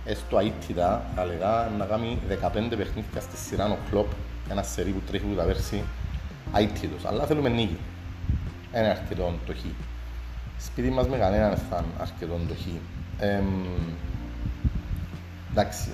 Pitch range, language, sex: 85-110 Hz, Greek, male